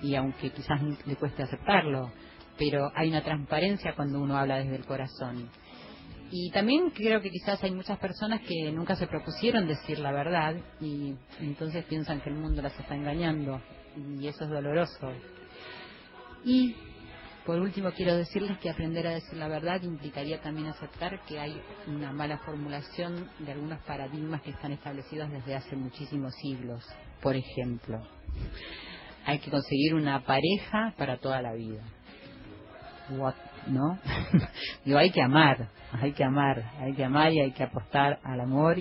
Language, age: Spanish, 30-49